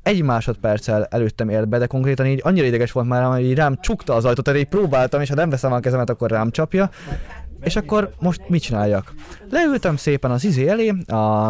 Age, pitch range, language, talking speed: 20-39, 115-150 Hz, Hungarian, 210 wpm